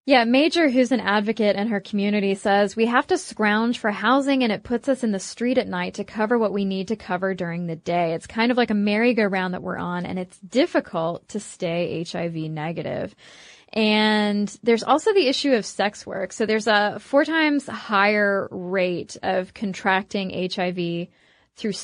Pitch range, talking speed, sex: 195-230 Hz, 190 wpm, female